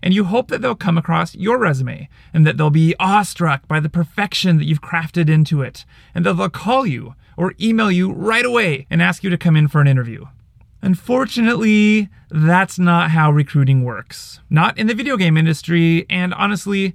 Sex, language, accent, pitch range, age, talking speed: male, English, American, 145-190 Hz, 30-49, 195 wpm